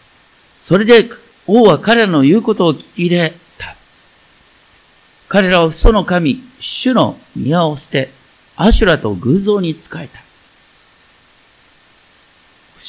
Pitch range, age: 160-230 Hz, 50-69